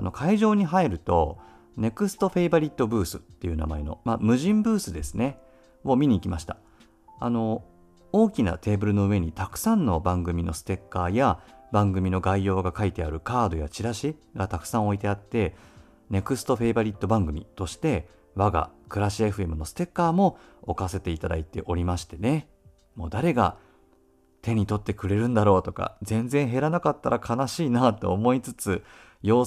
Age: 40-59